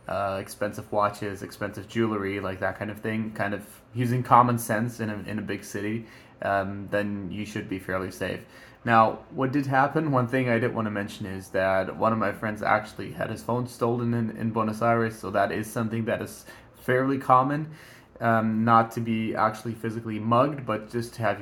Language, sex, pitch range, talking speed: English, male, 105-120 Hz, 200 wpm